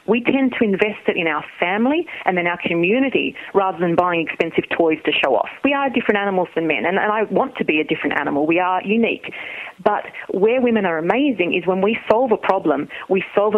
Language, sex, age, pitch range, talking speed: English, female, 40-59, 180-240 Hz, 220 wpm